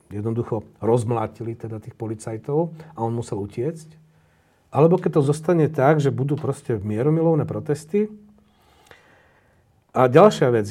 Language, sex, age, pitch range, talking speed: Slovak, male, 40-59, 115-155 Hz, 125 wpm